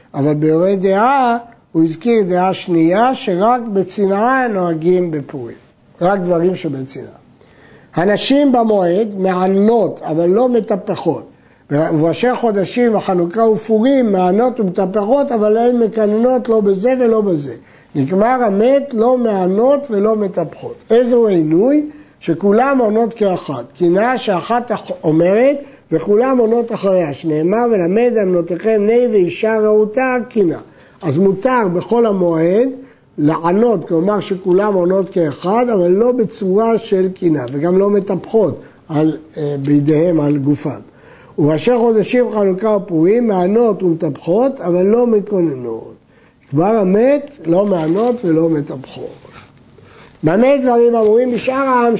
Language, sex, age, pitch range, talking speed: Hebrew, male, 60-79, 170-235 Hz, 115 wpm